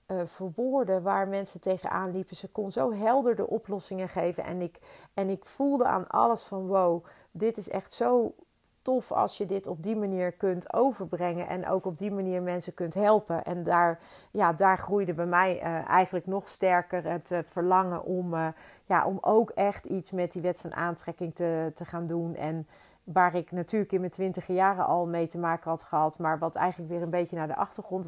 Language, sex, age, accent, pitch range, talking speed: Dutch, female, 40-59, Dutch, 170-195 Hz, 205 wpm